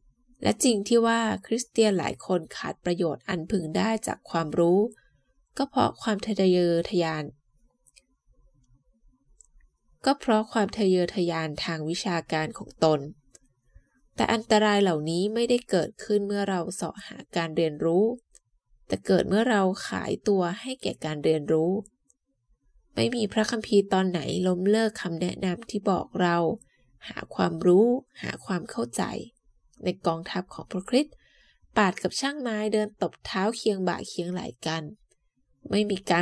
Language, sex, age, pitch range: Thai, female, 20-39, 160-215 Hz